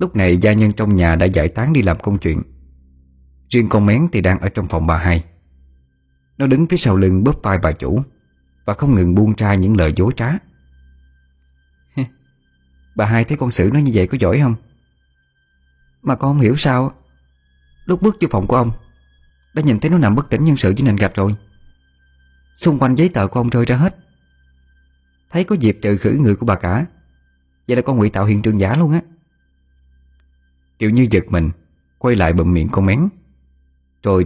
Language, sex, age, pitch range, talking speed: Vietnamese, male, 20-39, 65-110 Hz, 200 wpm